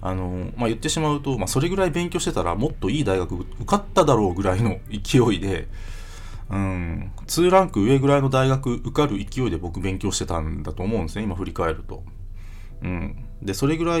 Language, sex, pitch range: Japanese, male, 95-120 Hz